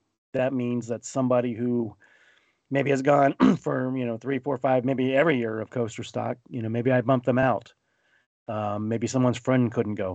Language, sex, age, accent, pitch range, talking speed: English, male, 30-49, American, 105-120 Hz, 195 wpm